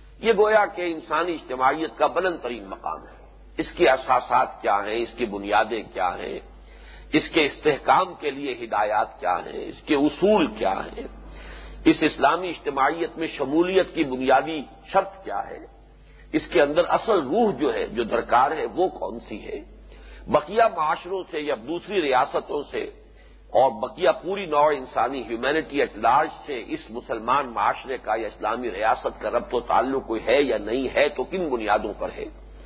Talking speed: 170 wpm